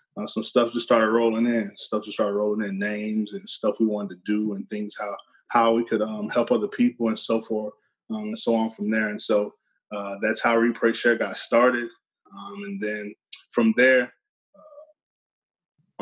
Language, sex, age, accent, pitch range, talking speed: English, male, 20-39, American, 105-120 Hz, 200 wpm